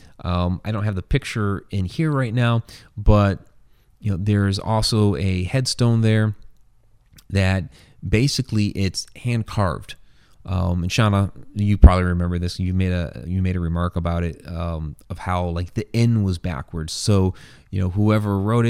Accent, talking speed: American, 160 wpm